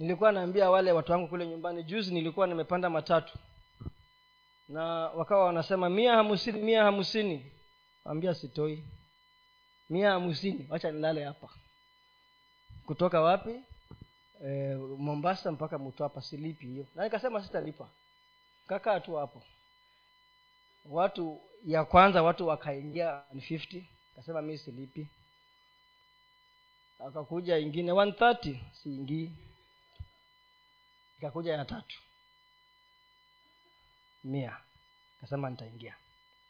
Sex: male